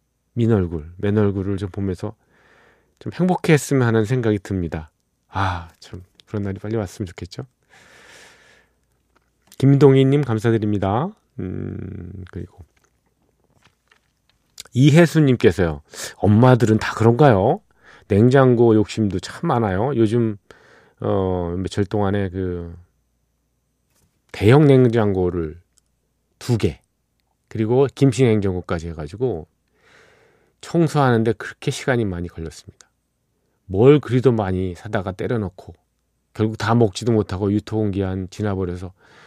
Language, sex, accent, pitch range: Korean, male, native, 90-120 Hz